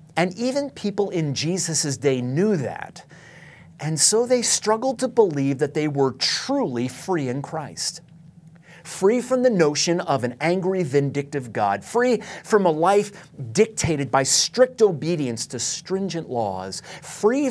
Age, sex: 40-59, male